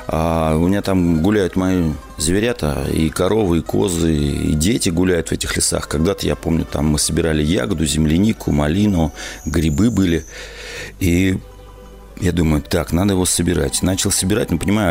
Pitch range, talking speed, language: 80-105 Hz, 155 wpm, Russian